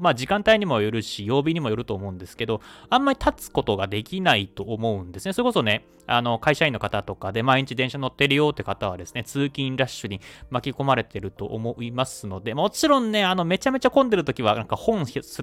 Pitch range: 105-175 Hz